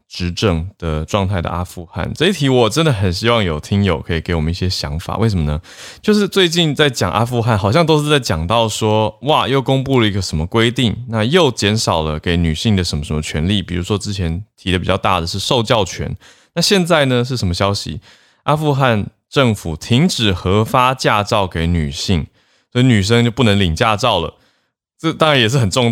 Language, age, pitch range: Chinese, 20-39, 90-120 Hz